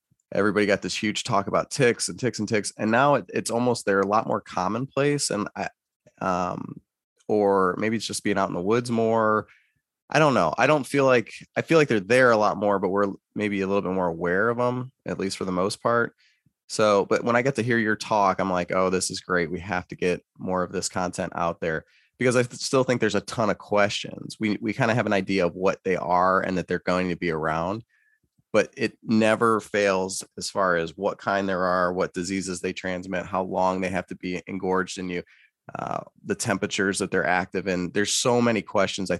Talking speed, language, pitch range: 230 wpm, English, 90-110 Hz